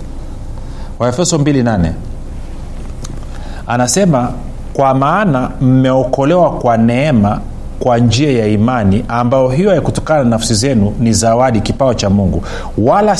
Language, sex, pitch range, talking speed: Swahili, male, 105-145 Hz, 105 wpm